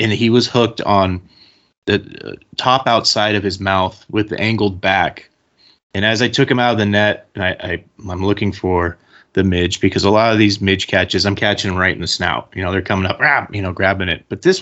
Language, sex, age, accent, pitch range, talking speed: English, male, 30-49, American, 95-115 Hz, 240 wpm